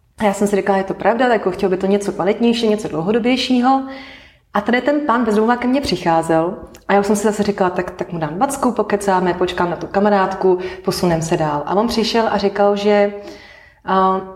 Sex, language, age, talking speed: female, Slovak, 30-49, 210 wpm